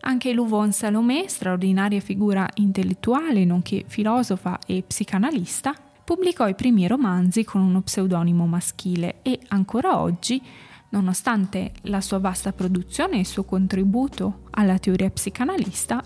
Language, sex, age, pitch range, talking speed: Italian, female, 20-39, 190-235 Hz, 125 wpm